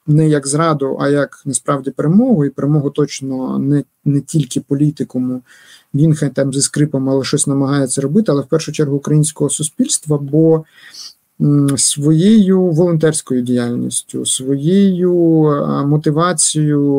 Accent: native